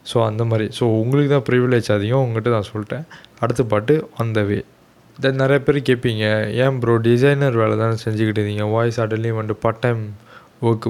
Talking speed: 170 wpm